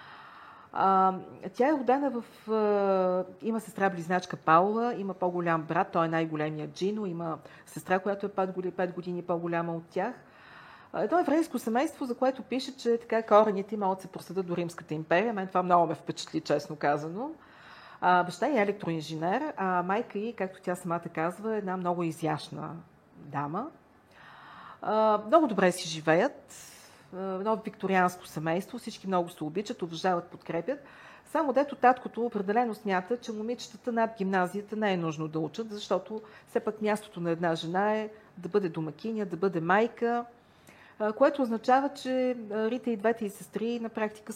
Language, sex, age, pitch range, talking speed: Bulgarian, female, 40-59, 170-225 Hz, 160 wpm